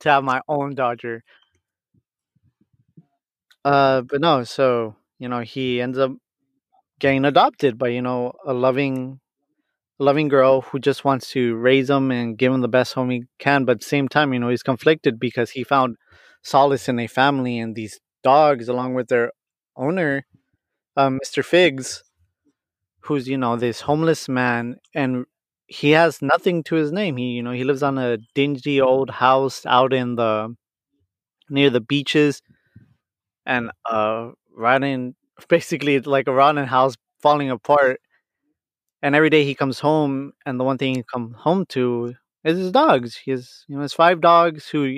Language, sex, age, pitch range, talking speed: English, male, 20-39, 125-145 Hz, 170 wpm